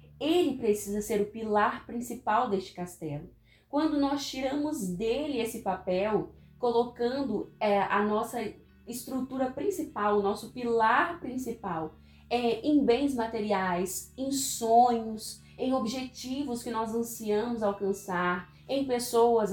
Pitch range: 200-245 Hz